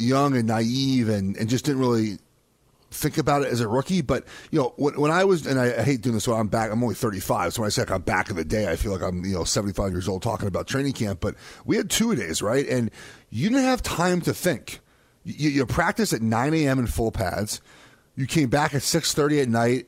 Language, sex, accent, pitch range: English, male, American, 110-140 Hz